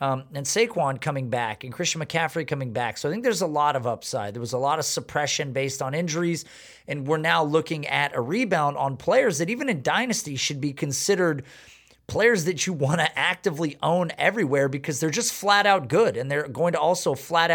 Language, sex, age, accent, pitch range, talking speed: English, male, 30-49, American, 135-175 Hz, 215 wpm